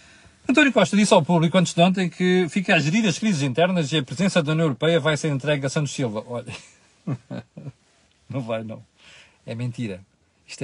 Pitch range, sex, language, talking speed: 125-170 Hz, male, Portuguese, 190 wpm